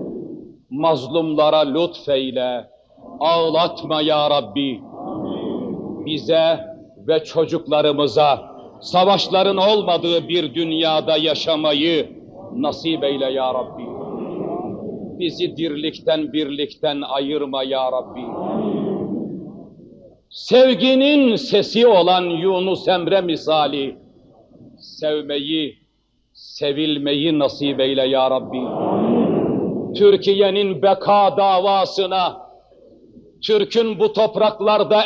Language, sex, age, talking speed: Turkish, male, 60-79, 70 wpm